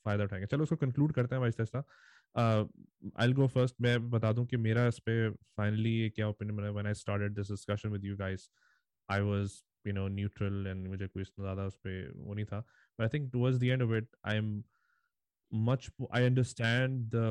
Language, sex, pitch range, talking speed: English, male, 110-135 Hz, 115 wpm